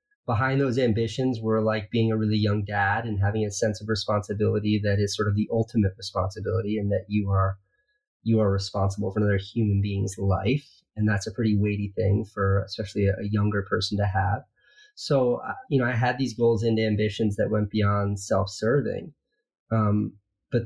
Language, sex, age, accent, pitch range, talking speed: English, male, 30-49, American, 100-120 Hz, 180 wpm